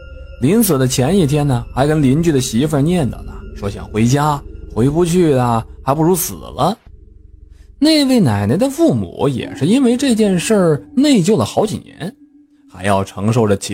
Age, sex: 20-39, male